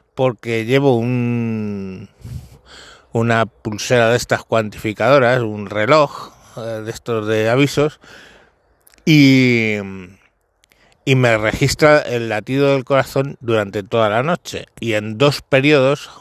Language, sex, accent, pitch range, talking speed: Spanish, male, Spanish, 110-135 Hz, 105 wpm